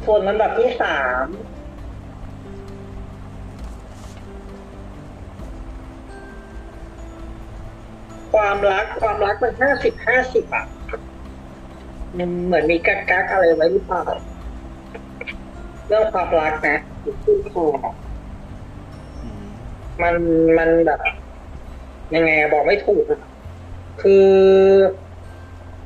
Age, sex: 60-79, female